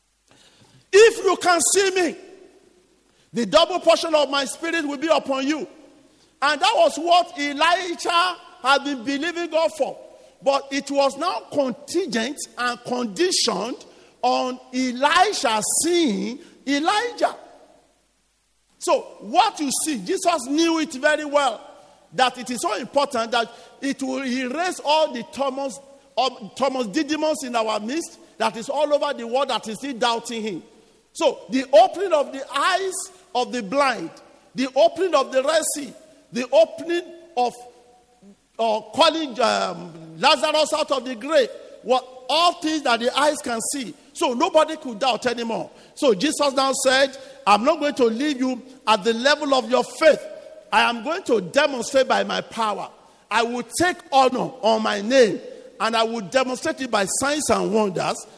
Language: English